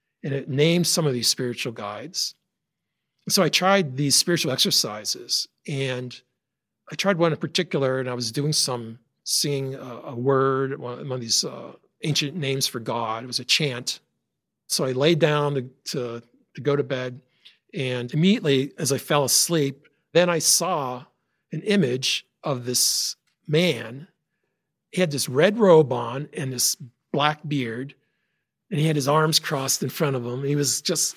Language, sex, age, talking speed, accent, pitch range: English, male, 50-69, 170 wpm, American, 130-160 Hz